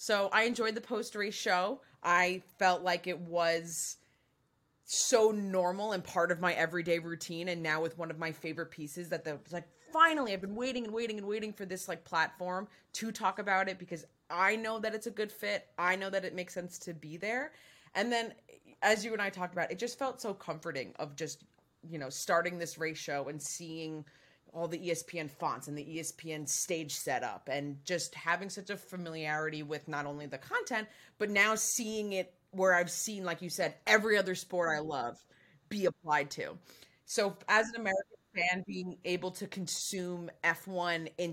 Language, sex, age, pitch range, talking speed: English, female, 20-39, 165-200 Hz, 195 wpm